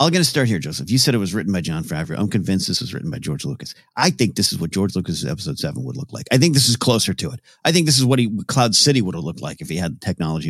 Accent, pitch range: American, 100-130 Hz